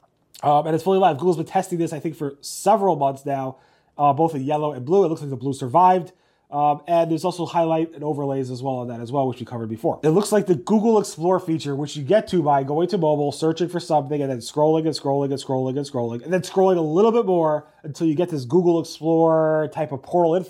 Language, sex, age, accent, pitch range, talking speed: English, male, 30-49, American, 140-175 Hz, 255 wpm